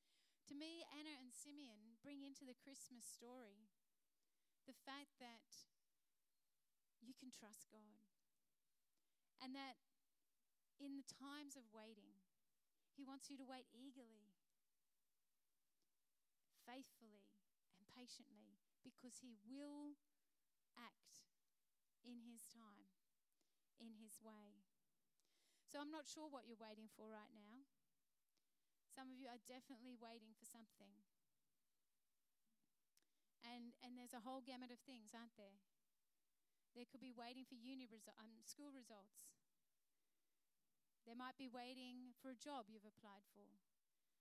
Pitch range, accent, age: 220-270 Hz, Australian, 30-49